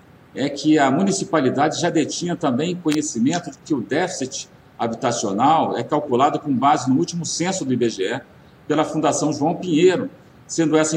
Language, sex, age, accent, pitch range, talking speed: Portuguese, male, 50-69, Brazilian, 135-175 Hz, 150 wpm